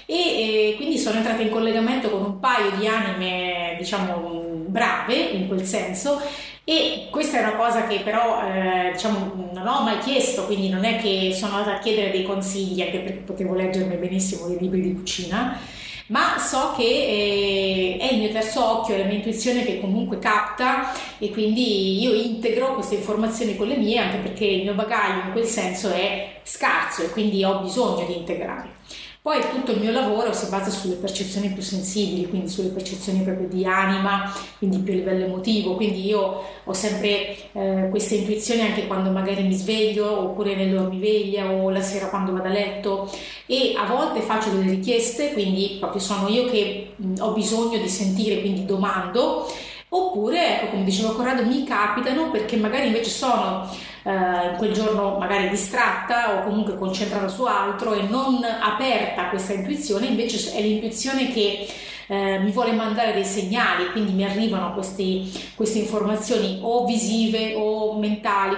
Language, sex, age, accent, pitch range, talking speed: Italian, female, 30-49, native, 195-225 Hz, 175 wpm